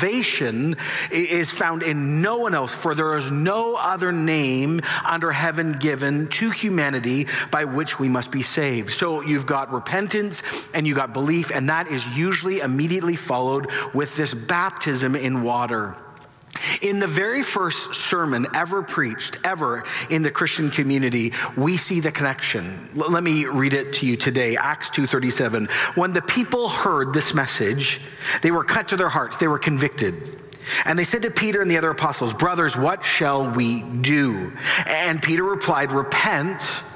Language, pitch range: English, 135-175 Hz